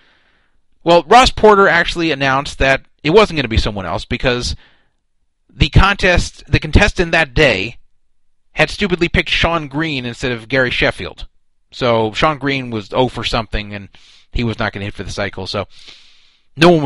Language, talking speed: English, 175 wpm